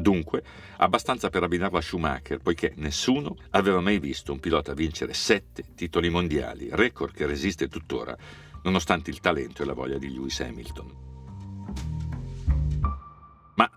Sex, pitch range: male, 75-100 Hz